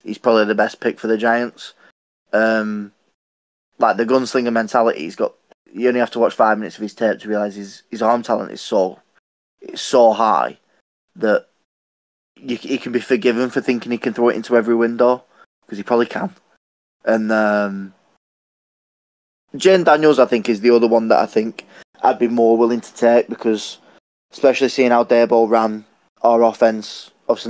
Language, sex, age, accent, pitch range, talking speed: English, male, 10-29, British, 105-120 Hz, 180 wpm